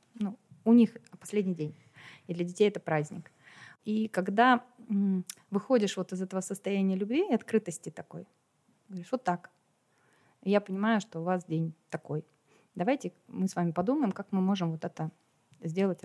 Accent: native